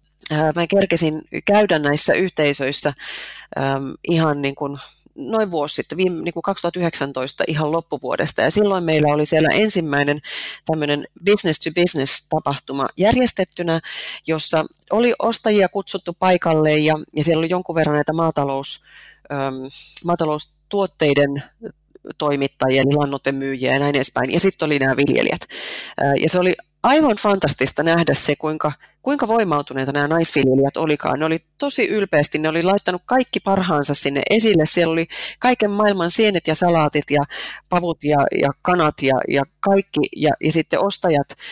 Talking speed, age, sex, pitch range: 140 wpm, 30-49, female, 145-185 Hz